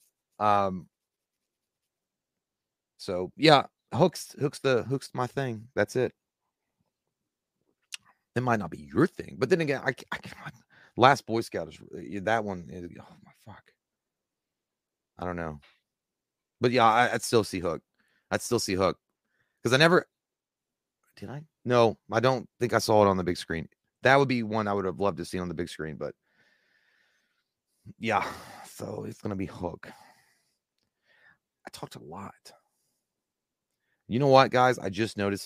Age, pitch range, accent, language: 30-49, 100-135 Hz, American, English